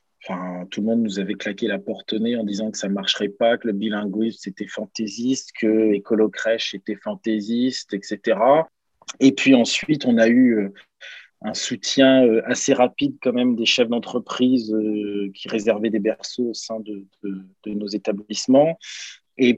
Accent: French